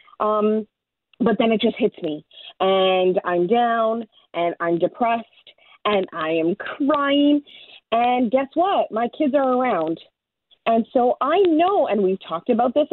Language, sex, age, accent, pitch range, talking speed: English, female, 40-59, American, 190-280 Hz, 155 wpm